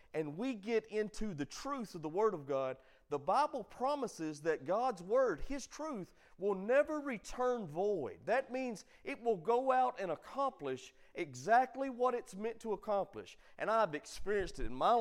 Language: English